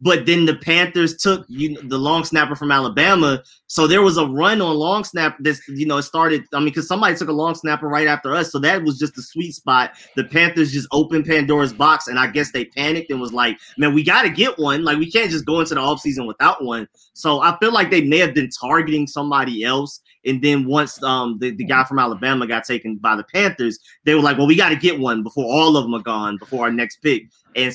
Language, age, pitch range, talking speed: English, 20-39, 130-155 Hz, 255 wpm